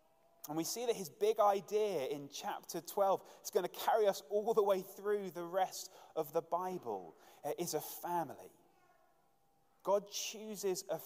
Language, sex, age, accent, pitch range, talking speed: English, male, 30-49, British, 150-200 Hz, 165 wpm